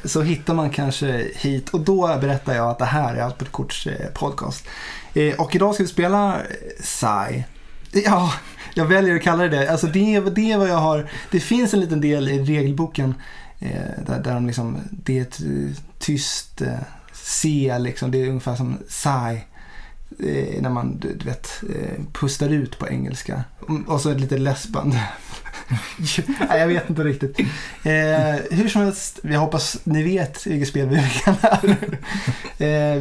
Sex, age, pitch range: male, 20-39, 130-165 Hz